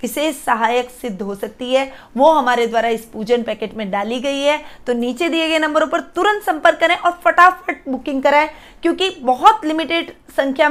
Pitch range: 230-290 Hz